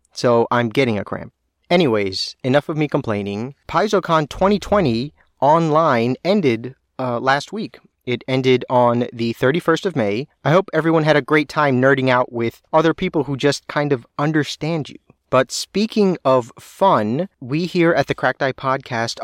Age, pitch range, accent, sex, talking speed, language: 30-49, 120-155 Hz, American, male, 165 wpm, English